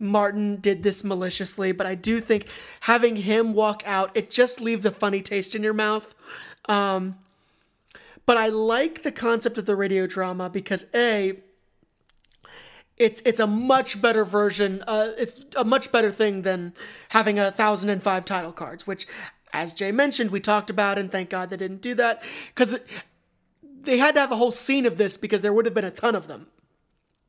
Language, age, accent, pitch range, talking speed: English, 30-49, American, 195-230 Hz, 190 wpm